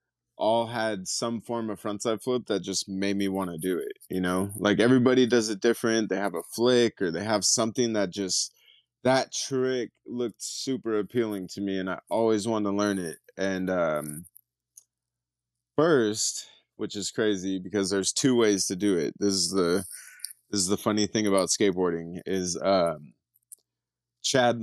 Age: 20-39